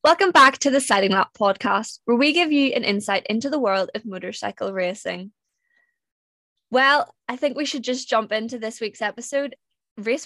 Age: 20-39